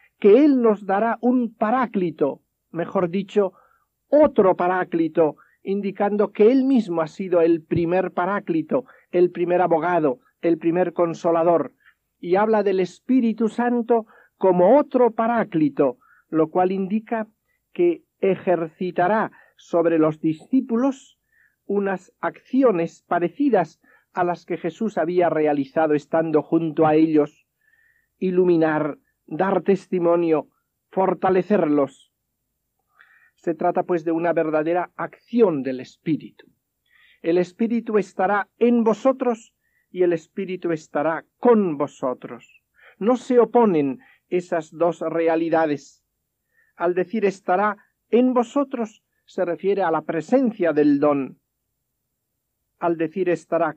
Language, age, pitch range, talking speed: Spanish, 50-69, 165-225 Hz, 110 wpm